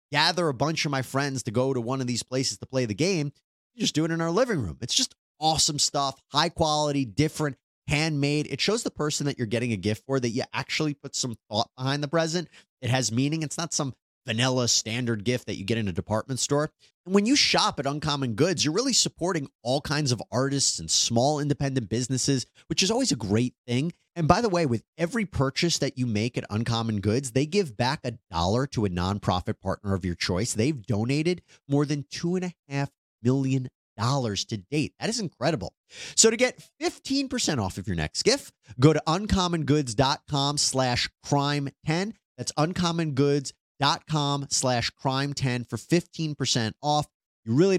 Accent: American